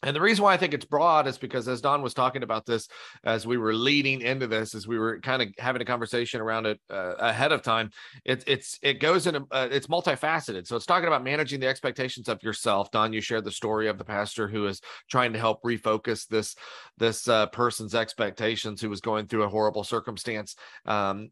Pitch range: 110-130 Hz